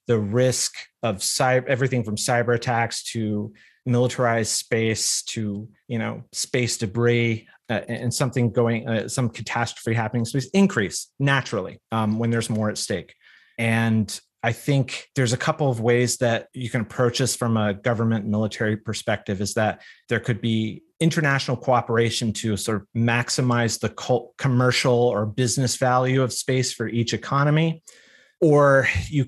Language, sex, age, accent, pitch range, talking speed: English, male, 30-49, American, 110-125 Hz, 150 wpm